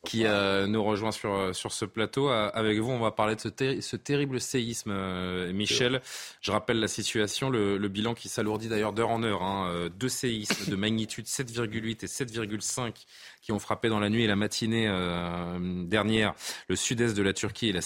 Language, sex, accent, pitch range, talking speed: French, male, French, 100-125 Hz, 200 wpm